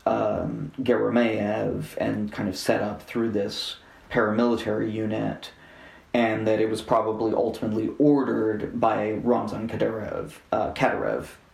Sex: male